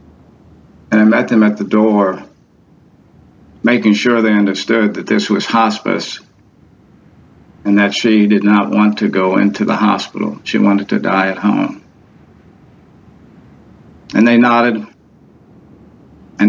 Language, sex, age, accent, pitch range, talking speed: English, male, 50-69, American, 100-120 Hz, 125 wpm